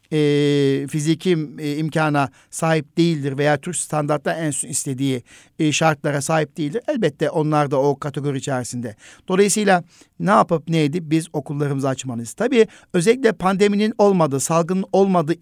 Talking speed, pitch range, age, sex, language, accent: 125 wpm, 140-180 Hz, 50-69, male, Turkish, native